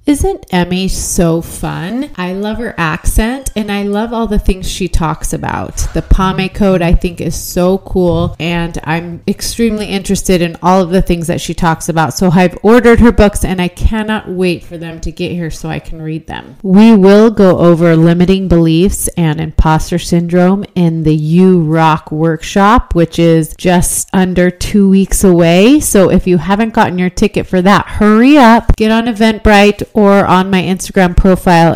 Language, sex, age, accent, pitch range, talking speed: English, female, 30-49, American, 165-195 Hz, 185 wpm